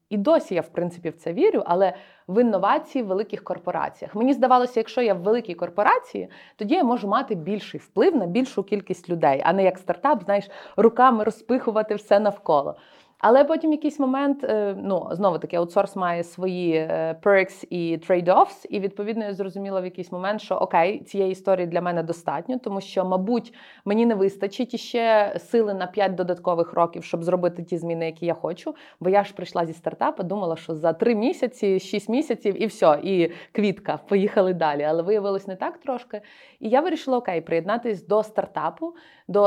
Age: 30-49